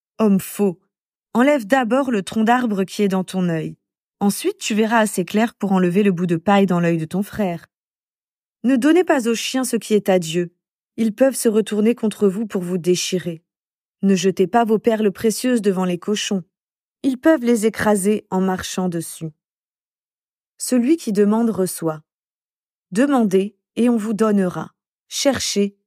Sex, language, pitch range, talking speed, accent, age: female, French, 190-250 Hz, 170 wpm, French, 20-39